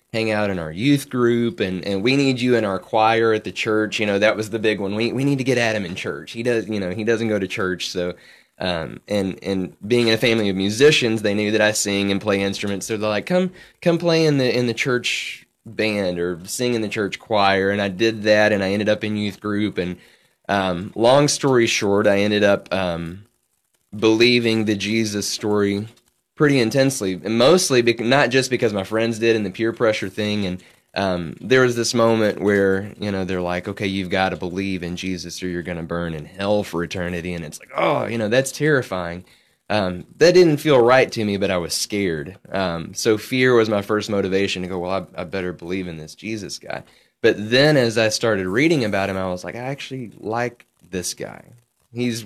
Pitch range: 95-120 Hz